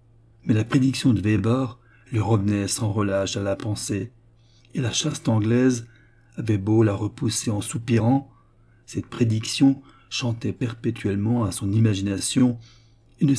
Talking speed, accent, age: 140 wpm, French, 60-79